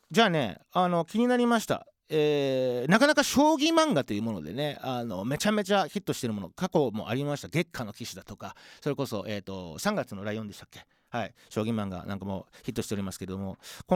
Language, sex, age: Japanese, male, 40-59